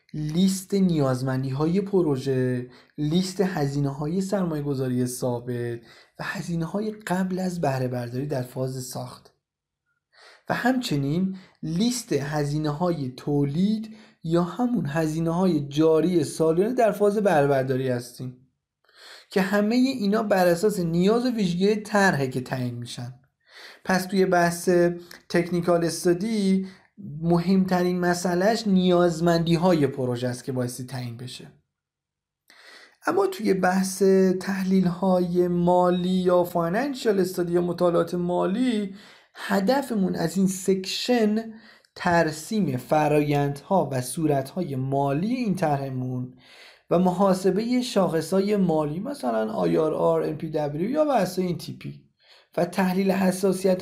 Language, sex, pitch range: Persian, male, 145-190 Hz